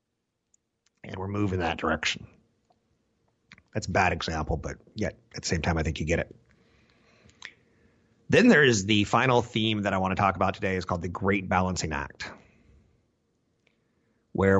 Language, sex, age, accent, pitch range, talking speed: English, male, 30-49, American, 90-110 Hz, 165 wpm